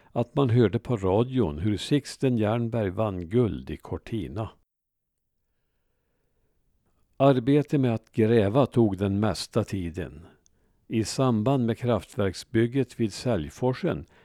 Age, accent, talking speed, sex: 50-69, Norwegian, 110 wpm, male